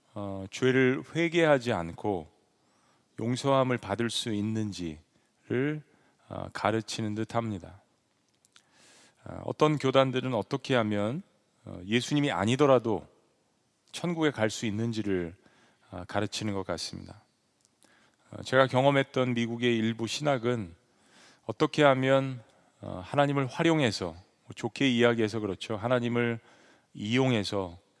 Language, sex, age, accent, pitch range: Korean, male, 40-59, native, 105-130 Hz